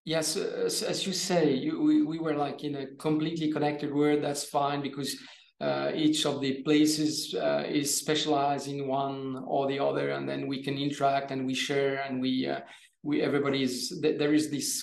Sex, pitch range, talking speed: male, 140-160 Hz, 185 wpm